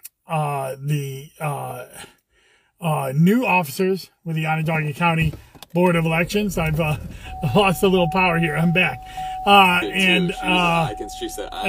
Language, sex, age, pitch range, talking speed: English, male, 30-49, 150-185 Hz, 140 wpm